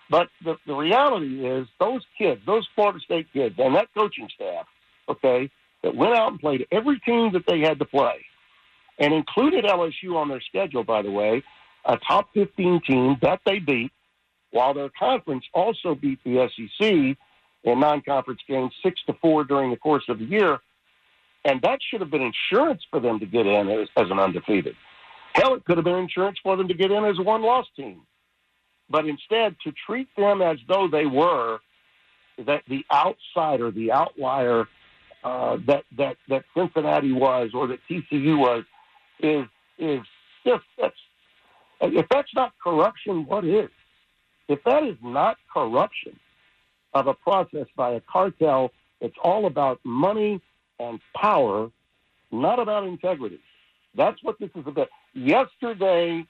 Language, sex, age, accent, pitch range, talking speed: English, male, 60-79, American, 130-200 Hz, 160 wpm